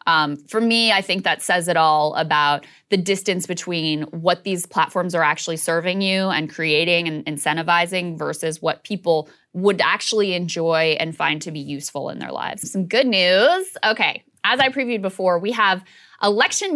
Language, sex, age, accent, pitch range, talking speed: English, female, 20-39, American, 160-205 Hz, 175 wpm